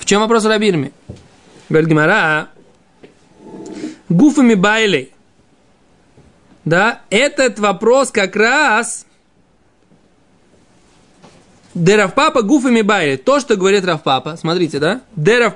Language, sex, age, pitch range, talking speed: Russian, male, 20-39, 170-225 Hz, 95 wpm